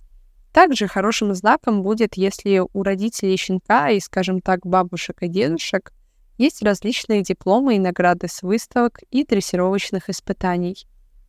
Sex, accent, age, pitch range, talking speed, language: female, native, 20-39, 180-225 Hz, 130 wpm, Russian